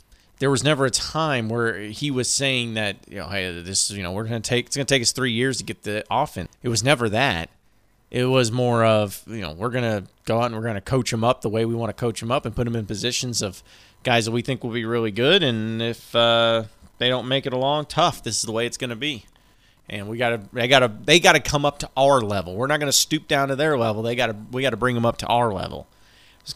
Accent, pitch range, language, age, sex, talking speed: American, 105-135 Hz, English, 30-49, male, 265 wpm